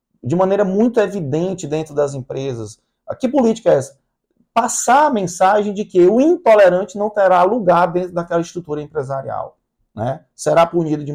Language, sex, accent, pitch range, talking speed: Portuguese, male, Brazilian, 155-210 Hz, 155 wpm